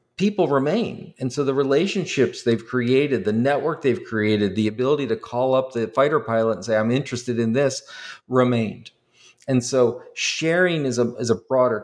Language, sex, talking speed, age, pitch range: English, male, 175 wpm, 40-59, 115-135 Hz